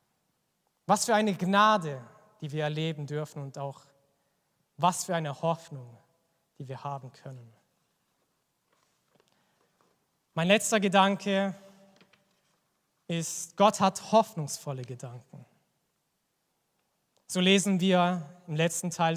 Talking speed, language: 100 wpm, German